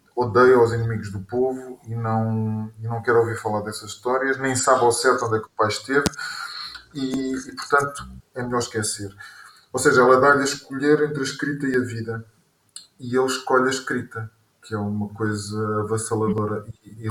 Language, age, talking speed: Portuguese, 20-39, 185 wpm